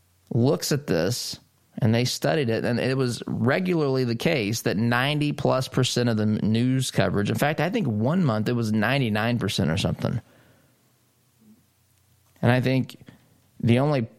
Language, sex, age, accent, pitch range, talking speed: English, male, 20-39, American, 105-130 Hz, 160 wpm